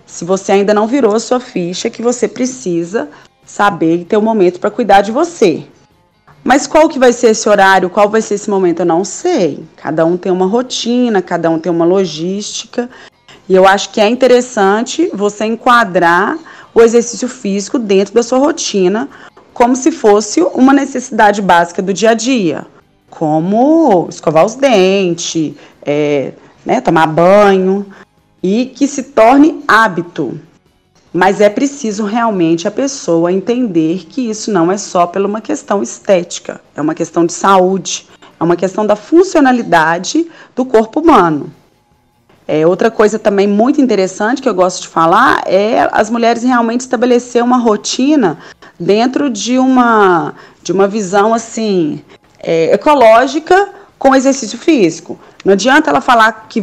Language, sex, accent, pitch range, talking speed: Portuguese, female, Brazilian, 185-245 Hz, 155 wpm